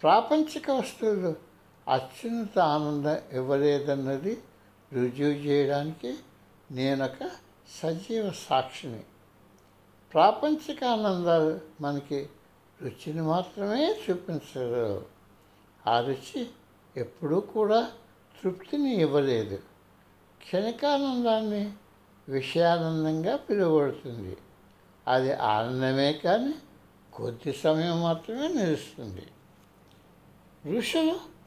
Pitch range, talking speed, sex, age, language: 130-195 Hz, 65 wpm, male, 60-79, Telugu